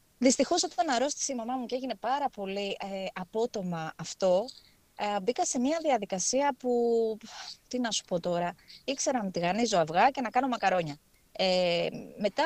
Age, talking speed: 20-39, 165 wpm